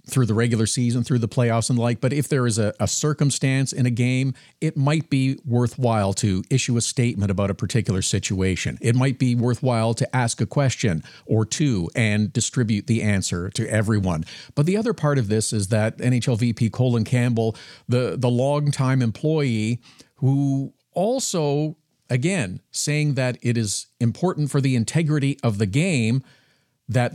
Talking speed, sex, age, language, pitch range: 175 wpm, male, 50-69, English, 120-160 Hz